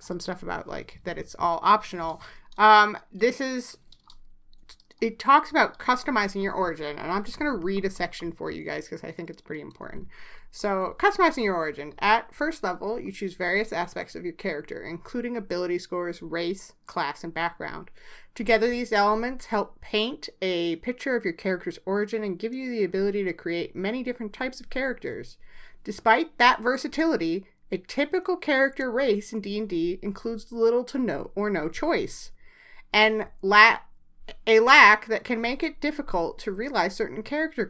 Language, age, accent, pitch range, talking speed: English, 30-49, American, 190-250 Hz, 170 wpm